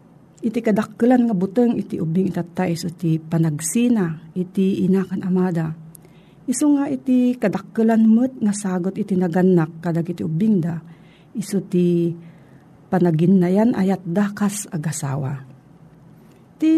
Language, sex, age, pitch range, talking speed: Filipino, female, 50-69, 165-220 Hz, 105 wpm